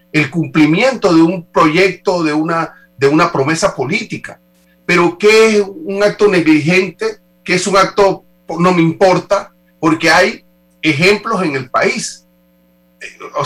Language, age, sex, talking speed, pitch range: Spanish, 40-59, male, 140 wpm, 130-195 Hz